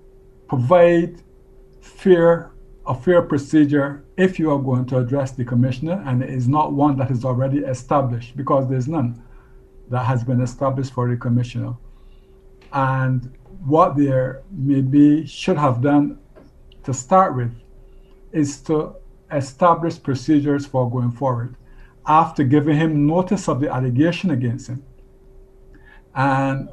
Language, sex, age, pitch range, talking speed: English, male, 60-79, 125-150 Hz, 135 wpm